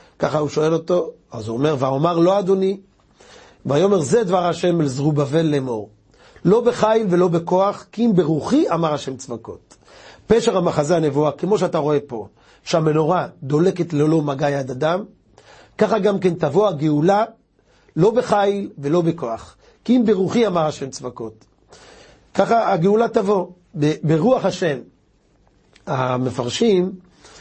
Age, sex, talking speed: 40-59, male, 140 wpm